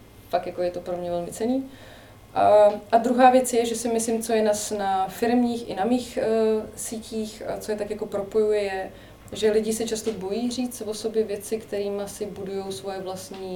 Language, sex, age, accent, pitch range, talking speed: Czech, female, 20-39, native, 185-215 Hz, 210 wpm